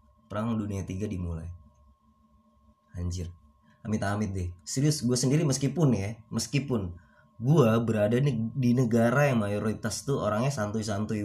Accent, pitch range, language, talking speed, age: native, 105-135 Hz, Indonesian, 125 wpm, 20-39